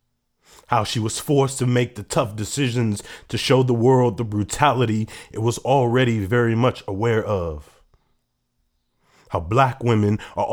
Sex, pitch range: male, 100-125 Hz